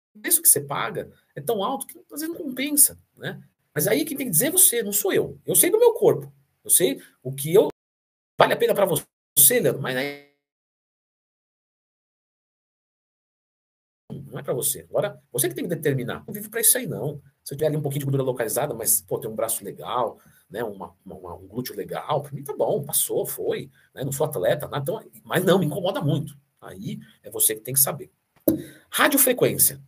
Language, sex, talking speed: Portuguese, male, 215 wpm